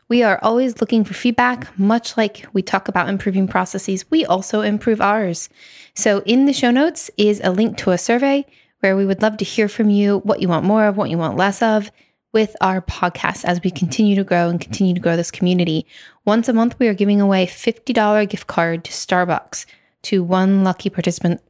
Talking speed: 215 wpm